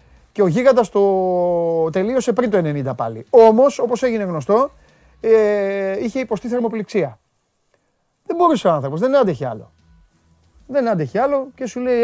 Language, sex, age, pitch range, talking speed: Greek, male, 30-49, 155-225 Hz, 150 wpm